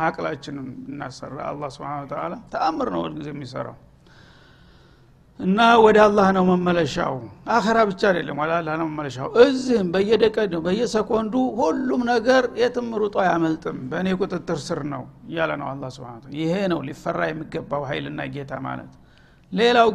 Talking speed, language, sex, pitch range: 120 wpm, Amharic, male, 170-225 Hz